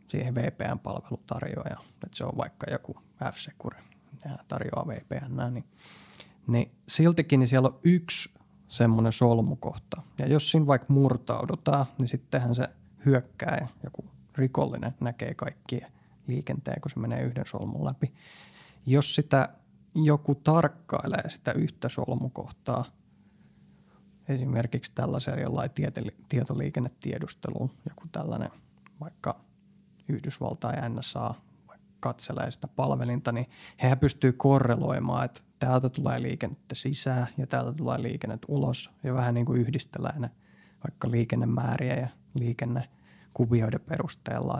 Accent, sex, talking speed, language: native, male, 115 wpm, Finnish